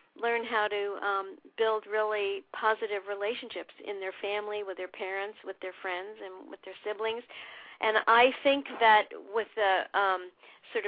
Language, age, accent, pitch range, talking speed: English, 50-69, American, 200-235 Hz, 160 wpm